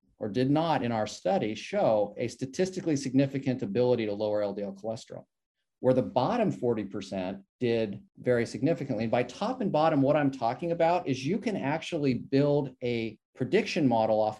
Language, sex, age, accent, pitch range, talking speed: English, male, 40-59, American, 115-145 Hz, 165 wpm